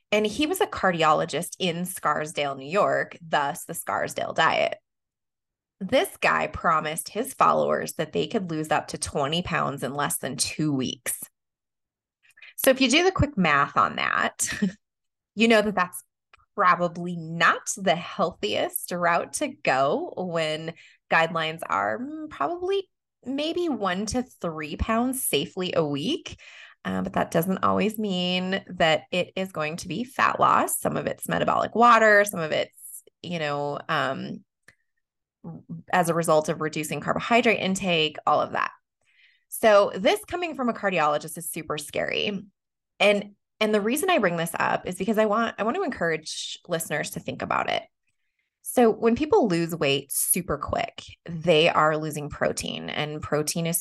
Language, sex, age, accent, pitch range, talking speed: English, female, 20-39, American, 155-230 Hz, 160 wpm